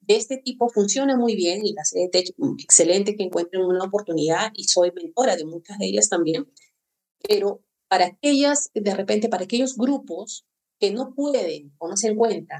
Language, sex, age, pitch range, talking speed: Spanish, female, 30-49, 175-220 Hz, 175 wpm